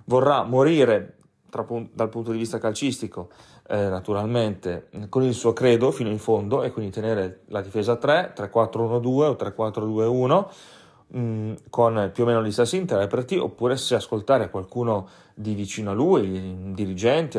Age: 30-49